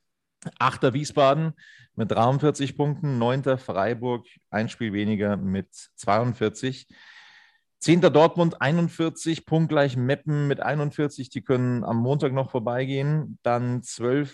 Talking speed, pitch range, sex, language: 115 wpm, 105-130 Hz, male, German